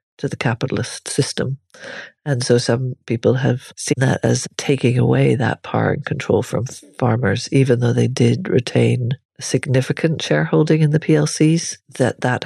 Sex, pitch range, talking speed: female, 115-135 Hz, 155 wpm